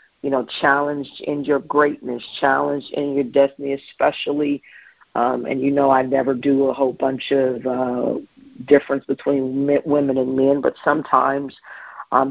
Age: 50-69